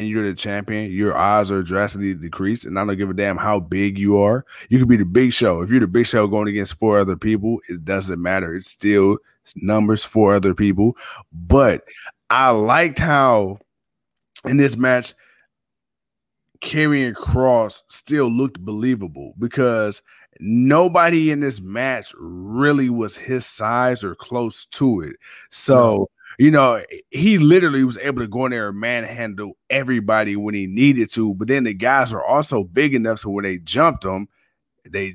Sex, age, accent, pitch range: male, 20-39, American, 100-130 Hz